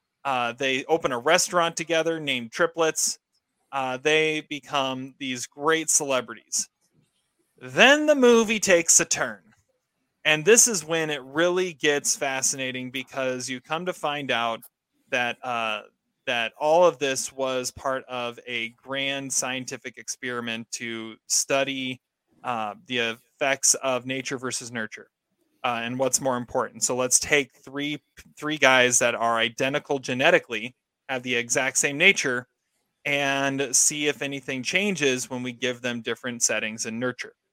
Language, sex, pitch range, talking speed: English, male, 130-160 Hz, 140 wpm